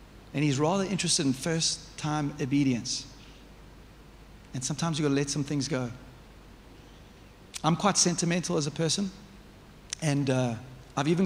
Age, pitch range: 40-59, 135-165 Hz